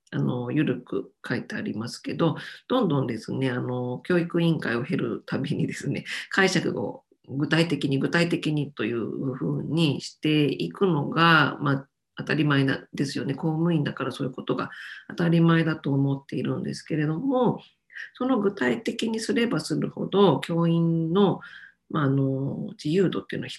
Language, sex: Japanese, female